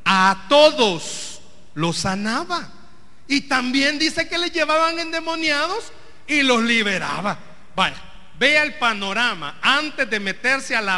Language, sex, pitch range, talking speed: Spanish, male, 195-275 Hz, 125 wpm